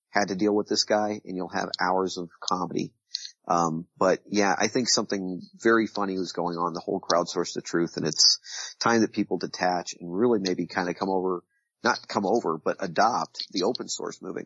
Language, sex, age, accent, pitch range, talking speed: English, male, 40-59, American, 100-130 Hz, 210 wpm